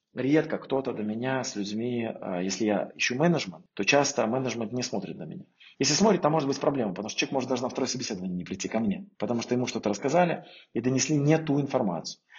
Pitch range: 115-140 Hz